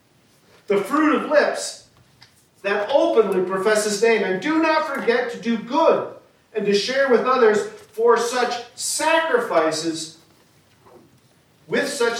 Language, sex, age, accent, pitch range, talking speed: English, male, 50-69, American, 190-285 Hz, 130 wpm